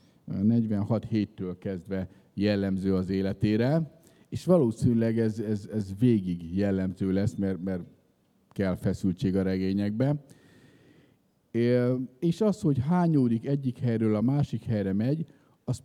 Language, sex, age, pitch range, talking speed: Hungarian, male, 50-69, 100-145 Hz, 115 wpm